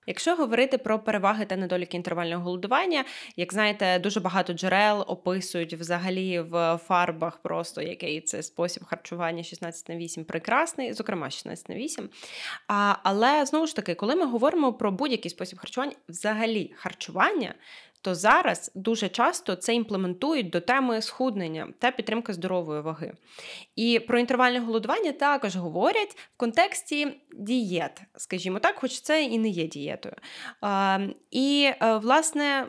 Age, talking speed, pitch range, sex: 20-39, 140 wpm, 185-260 Hz, female